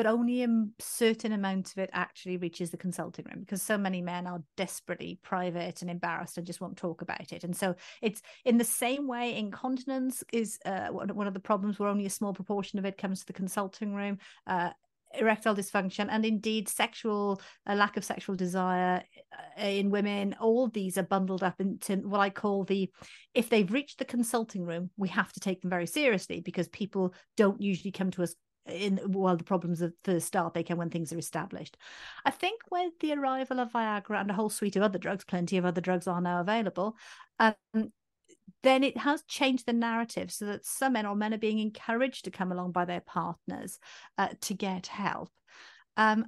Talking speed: 200 wpm